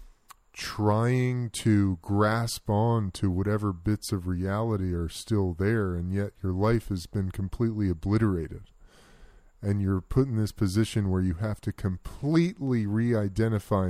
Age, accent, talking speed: 30-49, American, 145 wpm